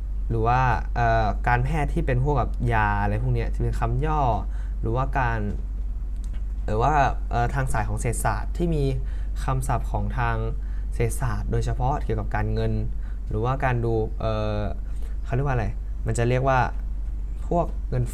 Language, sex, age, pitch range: Thai, male, 20-39, 105-130 Hz